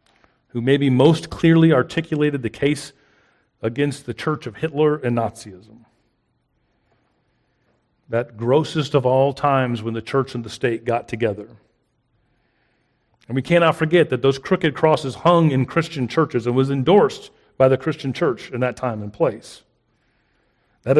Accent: American